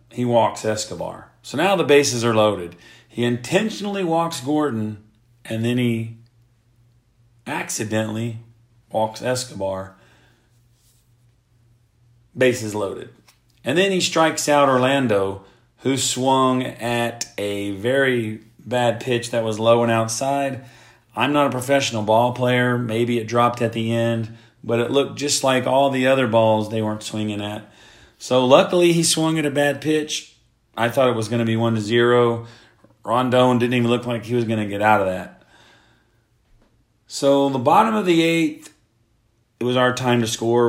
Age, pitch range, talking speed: 40-59, 115-130 Hz, 155 wpm